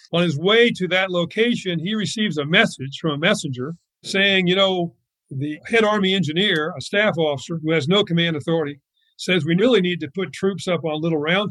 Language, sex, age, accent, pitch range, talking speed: English, male, 50-69, American, 150-185 Hz, 205 wpm